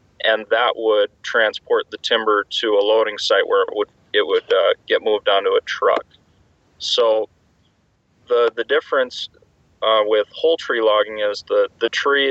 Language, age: English, 30-49